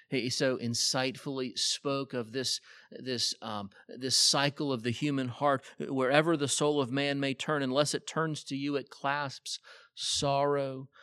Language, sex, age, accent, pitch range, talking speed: English, male, 40-59, American, 115-145 Hz, 160 wpm